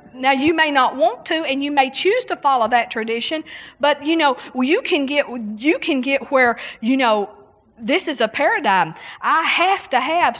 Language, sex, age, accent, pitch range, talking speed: English, female, 50-69, American, 220-275 Hz, 195 wpm